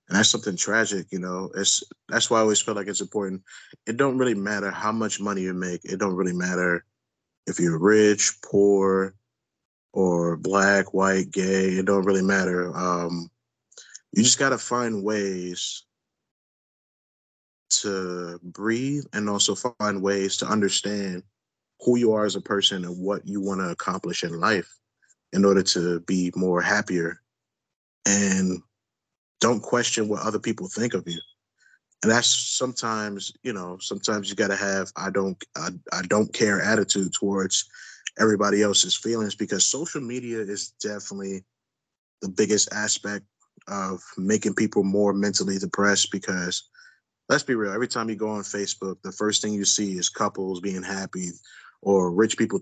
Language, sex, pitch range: English, male, 95-110 Hz